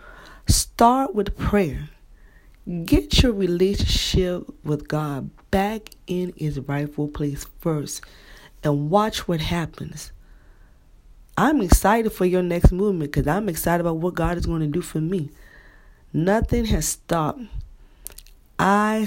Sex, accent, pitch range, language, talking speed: female, American, 145-195 Hz, English, 125 wpm